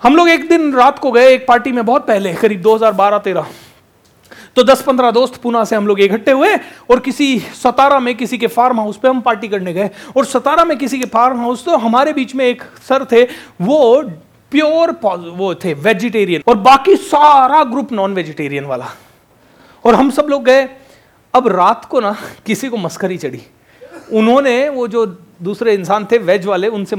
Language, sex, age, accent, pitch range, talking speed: Hindi, male, 30-49, native, 215-300 Hz, 185 wpm